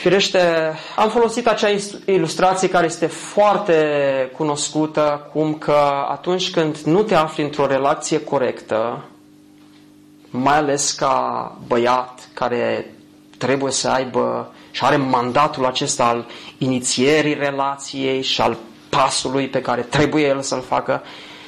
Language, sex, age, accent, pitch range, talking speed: Romanian, male, 20-39, native, 130-165 Hz, 115 wpm